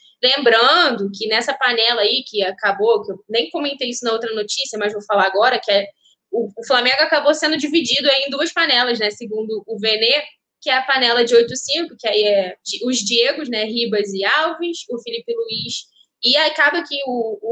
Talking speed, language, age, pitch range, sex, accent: 200 wpm, Portuguese, 10-29, 225-295 Hz, female, Brazilian